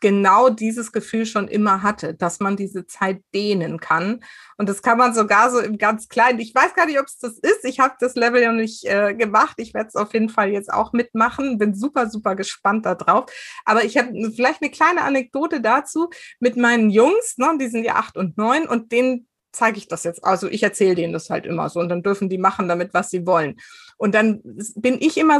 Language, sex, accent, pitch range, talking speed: German, female, German, 200-255 Hz, 230 wpm